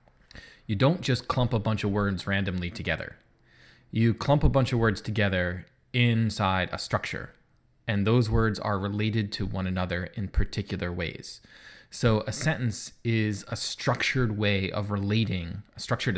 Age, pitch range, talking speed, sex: 20-39, 100-120 Hz, 155 wpm, male